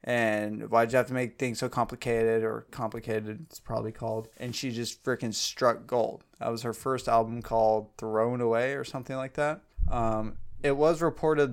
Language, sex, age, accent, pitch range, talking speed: English, male, 20-39, American, 110-125 Hz, 195 wpm